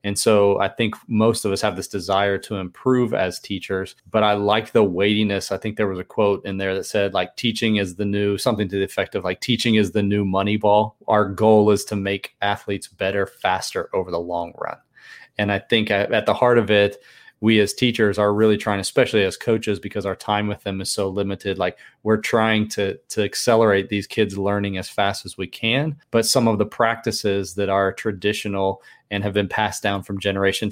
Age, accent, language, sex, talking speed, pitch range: 30-49, American, English, male, 220 wpm, 100-110 Hz